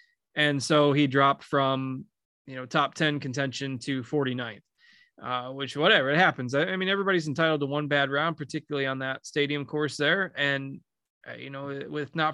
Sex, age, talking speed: male, 20-39, 185 wpm